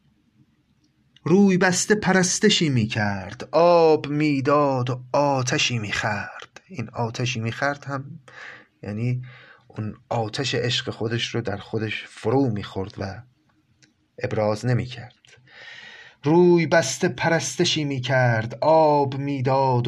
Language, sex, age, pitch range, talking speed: Persian, male, 30-49, 120-150 Hz, 105 wpm